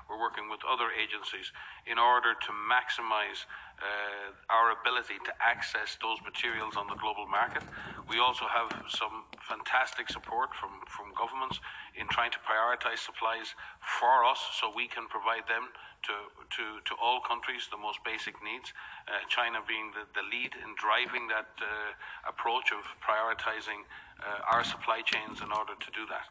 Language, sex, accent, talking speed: English, male, Irish, 165 wpm